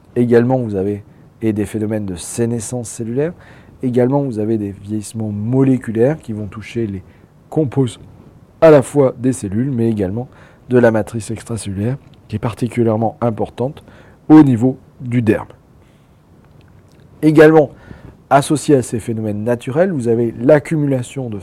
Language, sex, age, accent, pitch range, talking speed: French, male, 40-59, French, 105-130 Hz, 135 wpm